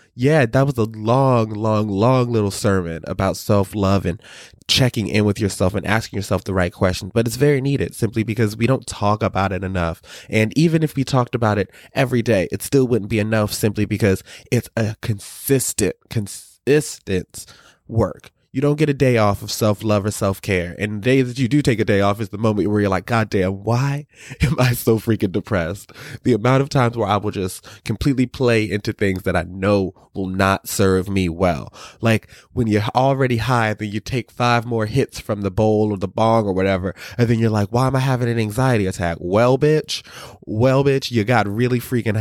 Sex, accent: male, American